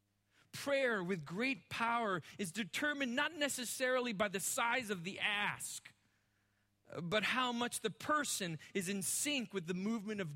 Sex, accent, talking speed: male, American, 150 wpm